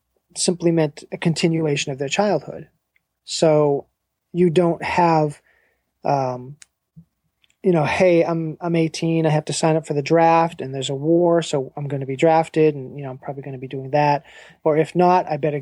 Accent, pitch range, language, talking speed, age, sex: American, 145-170 Hz, English, 195 wpm, 30-49, male